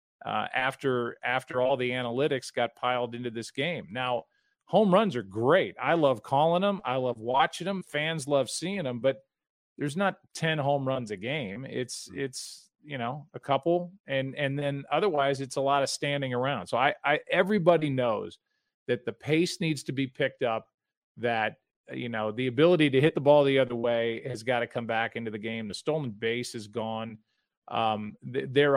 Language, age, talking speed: English, 40-59, 195 wpm